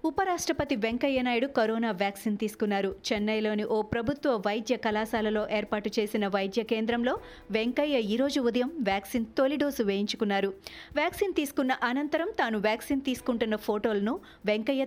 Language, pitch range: Telugu, 215-280 Hz